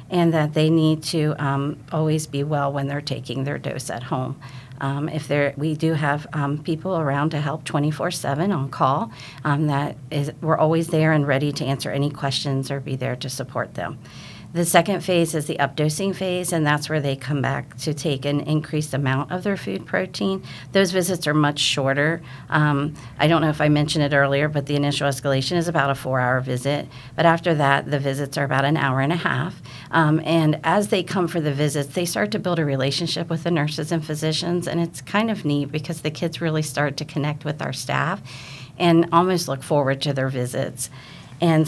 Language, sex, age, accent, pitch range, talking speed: English, female, 50-69, American, 140-165 Hz, 210 wpm